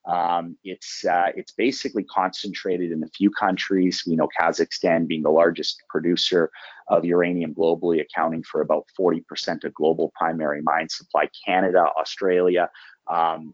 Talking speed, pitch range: 140 wpm, 80-90 Hz